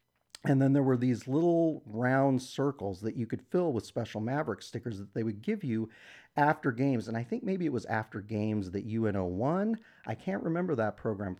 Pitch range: 105-140 Hz